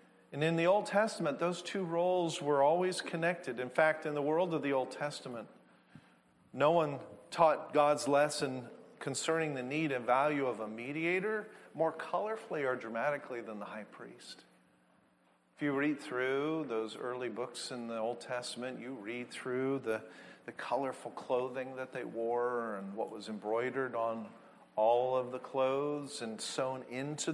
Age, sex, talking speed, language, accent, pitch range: 50-69, male, 160 wpm, English, American, 120-160 Hz